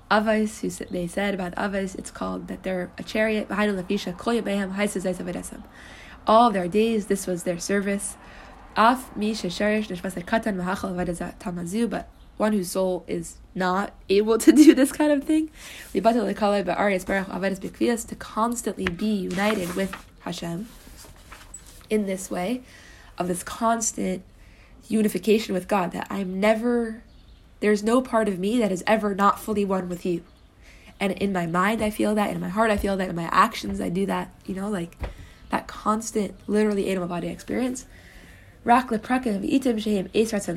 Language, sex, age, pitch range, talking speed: English, female, 20-39, 185-220 Hz, 135 wpm